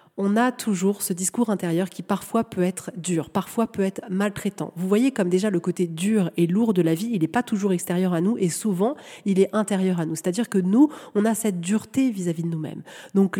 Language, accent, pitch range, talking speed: French, French, 185-235 Hz, 235 wpm